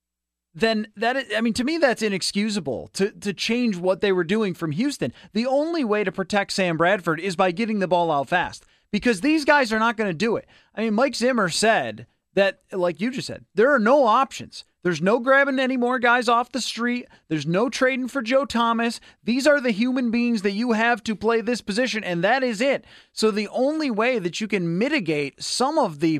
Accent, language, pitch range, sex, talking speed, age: American, English, 185-240 Hz, male, 220 wpm, 30-49